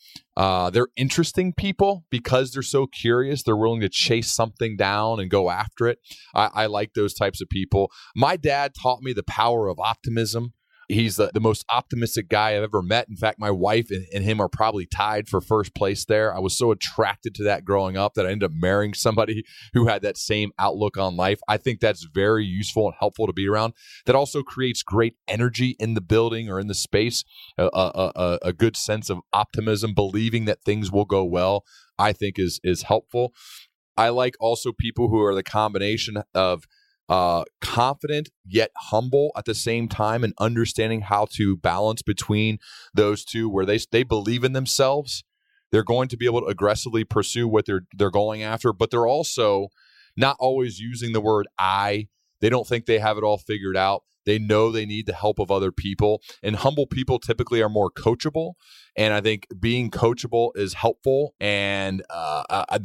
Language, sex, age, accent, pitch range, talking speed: English, male, 30-49, American, 100-120 Hz, 195 wpm